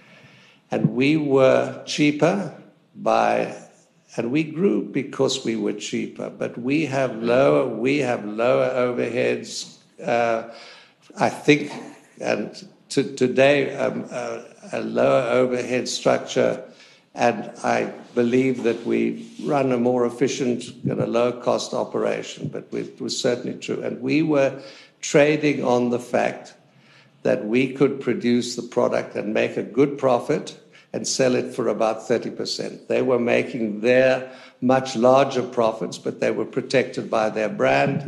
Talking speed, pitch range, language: 140 wpm, 120-140 Hz, English